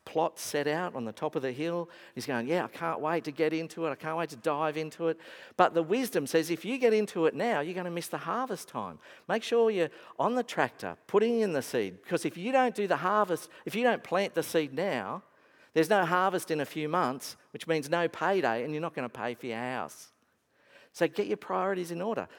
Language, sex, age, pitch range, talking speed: English, male, 50-69, 120-170 Hz, 250 wpm